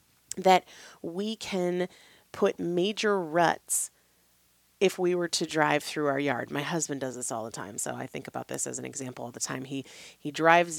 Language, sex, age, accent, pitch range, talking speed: English, female, 30-49, American, 170-250 Hz, 195 wpm